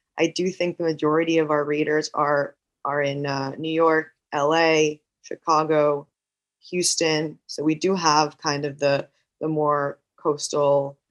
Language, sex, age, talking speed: English, female, 20-39, 145 wpm